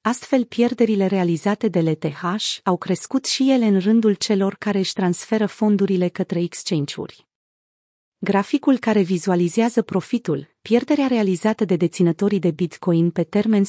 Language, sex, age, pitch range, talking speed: Romanian, female, 30-49, 180-225 Hz, 130 wpm